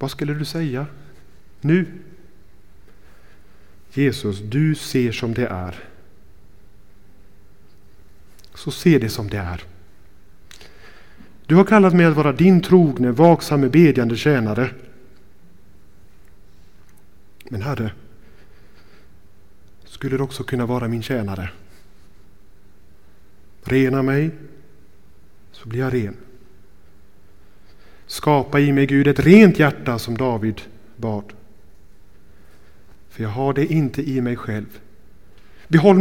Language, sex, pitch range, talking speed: Swedish, male, 100-150 Hz, 105 wpm